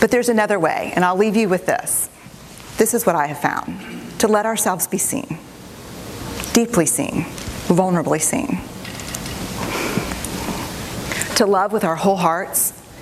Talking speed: 145 wpm